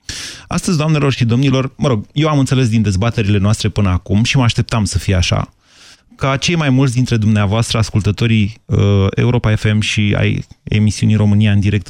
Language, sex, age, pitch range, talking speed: Romanian, male, 30-49, 105-140 Hz, 180 wpm